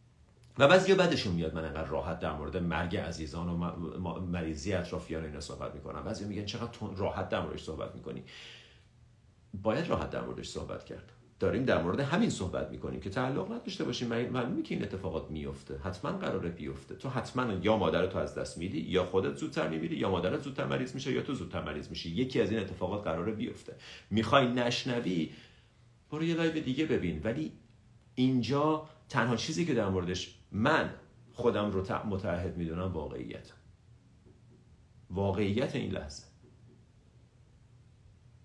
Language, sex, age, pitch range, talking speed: Persian, male, 50-69, 90-120 Hz, 165 wpm